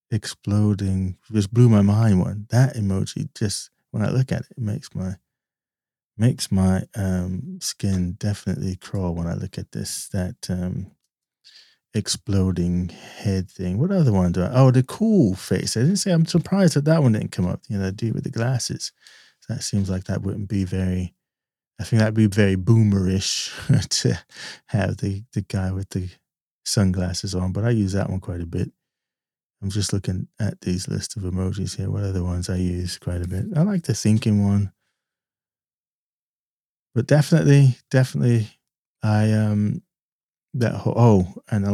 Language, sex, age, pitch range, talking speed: English, male, 30-49, 95-115 Hz, 175 wpm